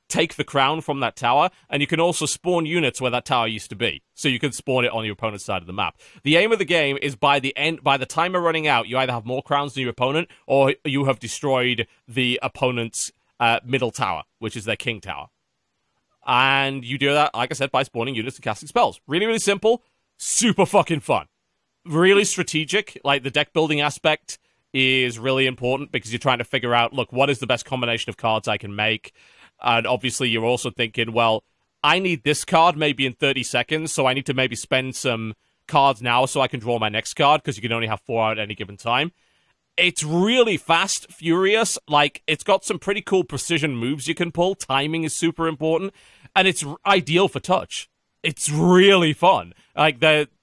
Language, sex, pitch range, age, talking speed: English, male, 120-160 Hz, 30-49, 215 wpm